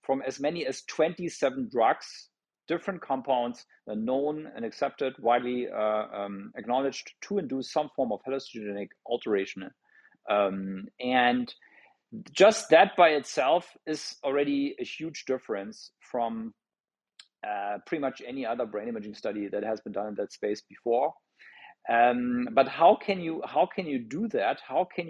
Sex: male